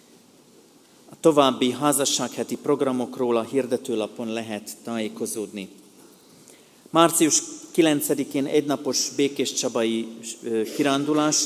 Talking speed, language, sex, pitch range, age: 75 wpm, Hungarian, male, 115-140 Hz, 40-59